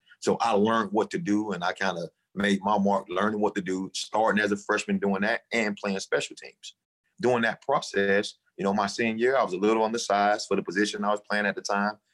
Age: 30-49